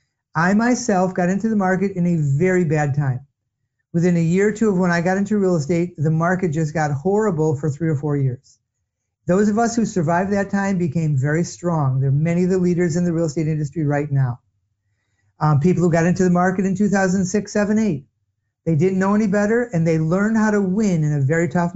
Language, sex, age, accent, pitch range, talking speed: English, male, 50-69, American, 140-185 Hz, 225 wpm